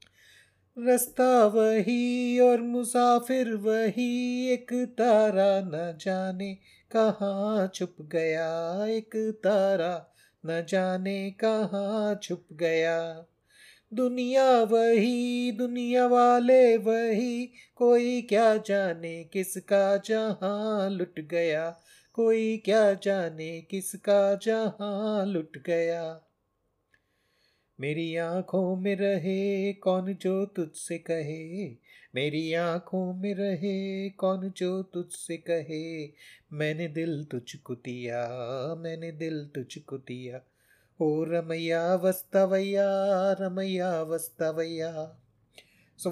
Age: 30-49